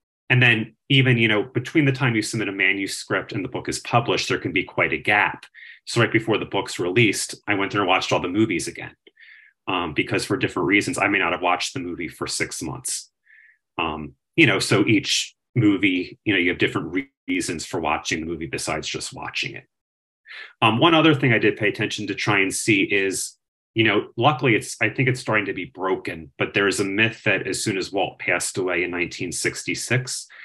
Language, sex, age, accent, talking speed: English, male, 30-49, American, 220 wpm